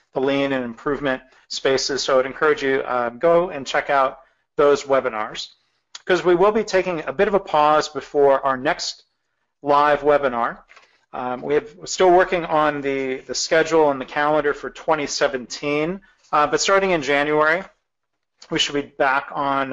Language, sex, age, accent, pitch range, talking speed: English, male, 40-59, American, 130-155 Hz, 165 wpm